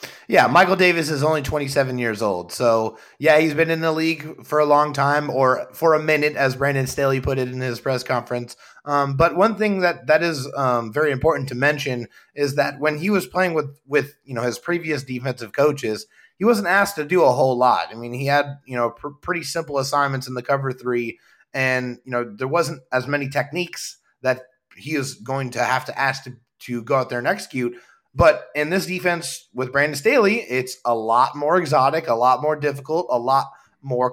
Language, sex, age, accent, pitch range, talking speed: English, male, 30-49, American, 125-160 Hz, 215 wpm